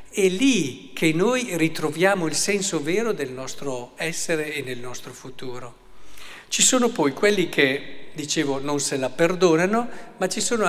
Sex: male